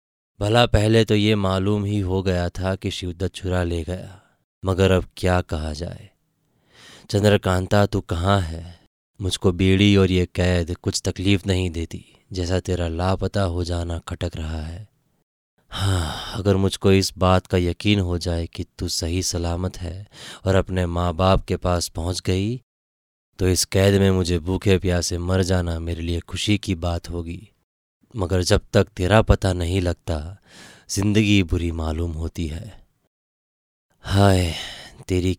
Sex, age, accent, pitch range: male, 20-39, native, 85-100 Hz